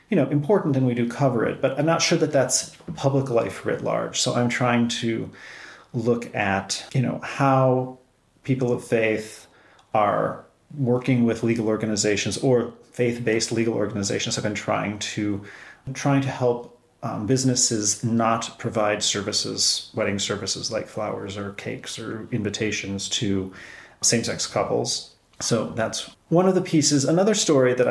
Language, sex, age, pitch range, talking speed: English, male, 30-49, 110-130 Hz, 155 wpm